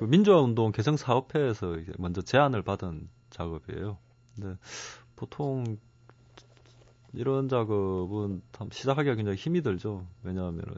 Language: Korean